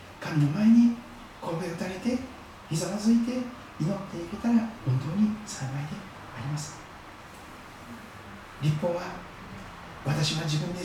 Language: Japanese